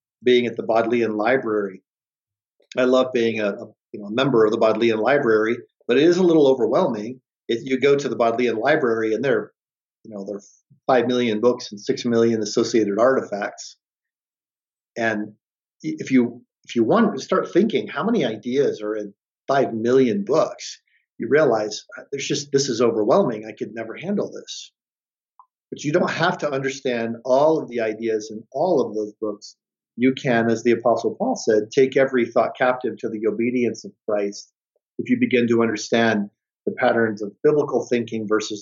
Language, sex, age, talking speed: English, male, 50-69, 180 wpm